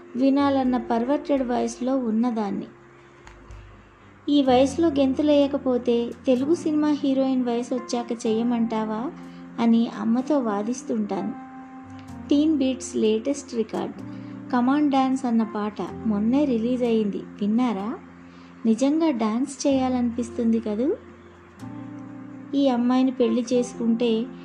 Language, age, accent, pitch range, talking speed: Telugu, 20-39, native, 225-265 Hz, 90 wpm